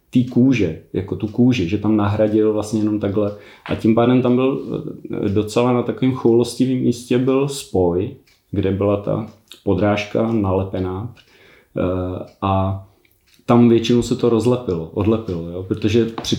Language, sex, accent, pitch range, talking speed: Czech, male, native, 100-115 Hz, 135 wpm